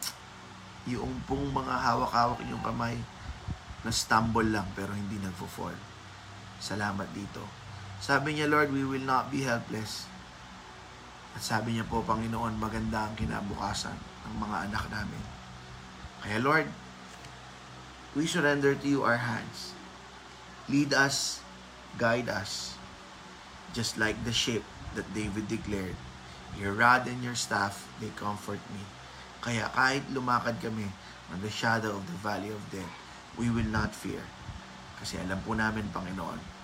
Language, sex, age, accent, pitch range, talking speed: Filipino, male, 20-39, native, 90-120 Hz, 135 wpm